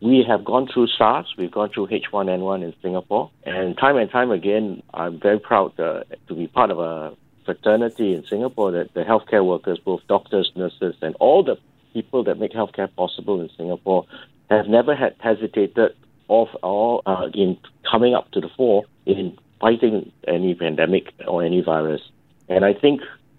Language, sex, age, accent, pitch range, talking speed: English, male, 50-69, Malaysian, 90-115 Hz, 175 wpm